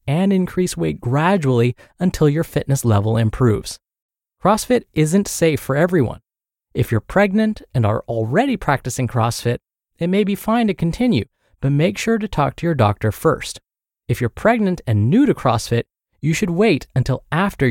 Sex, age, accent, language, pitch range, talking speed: male, 20-39, American, English, 120-190 Hz, 165 wpm